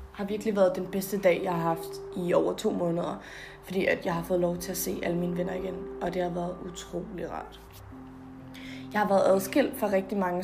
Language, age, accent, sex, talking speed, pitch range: Danish, 20-39, native, female, 225 wpm, 175-205 Hz